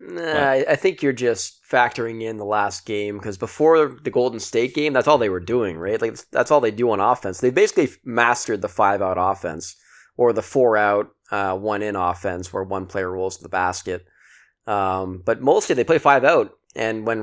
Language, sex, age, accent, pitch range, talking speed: English, male, 20-39, American, 95-115 Hz, 195 wpm